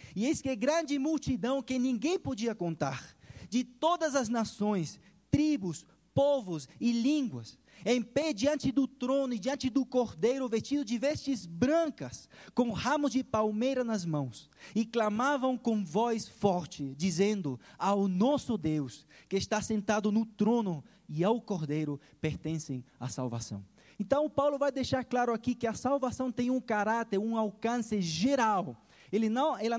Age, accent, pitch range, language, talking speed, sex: 20-39, Brazilian, 175-255 Hz, Portuguese, 145 wpm, male